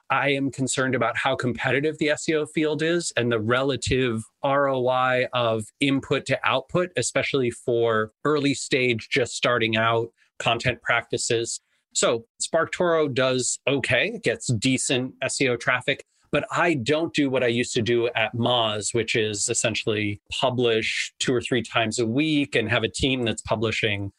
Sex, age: male, 30-49